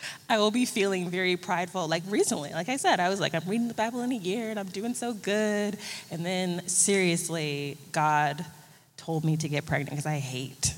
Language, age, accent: English, 20-39, American